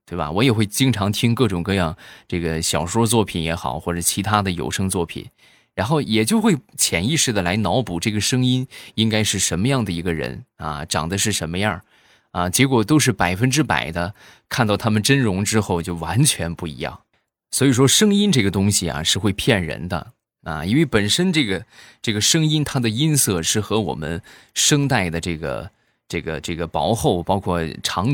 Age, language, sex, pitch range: 20-39, Chinese, male, 85-125 Hz